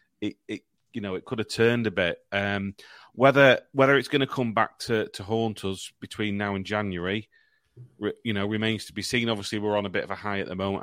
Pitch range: 95-110 Hz